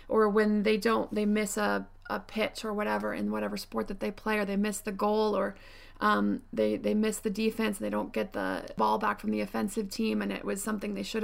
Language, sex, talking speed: English, female, 240 wpm